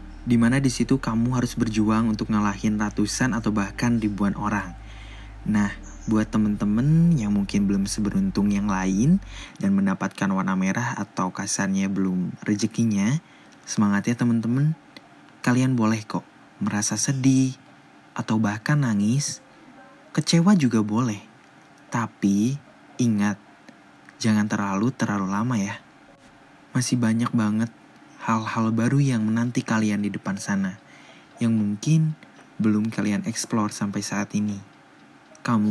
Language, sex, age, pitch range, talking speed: Indonesian, male, 20-39, 100-120 Hz, 120 wpm